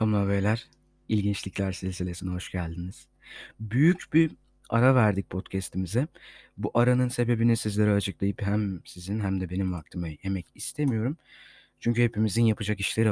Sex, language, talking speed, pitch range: male, Turkish, 125 wpm, 95-125 Hz